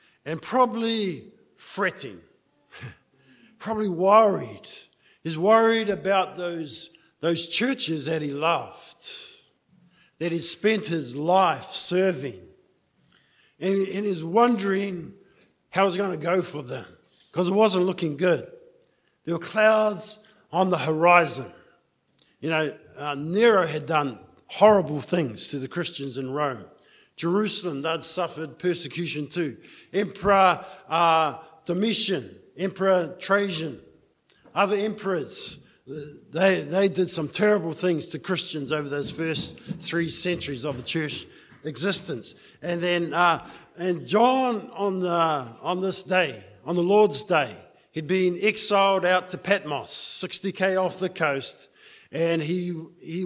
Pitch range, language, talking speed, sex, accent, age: 160-195 Hz, English, 125 wpm, male, Australian, 50-69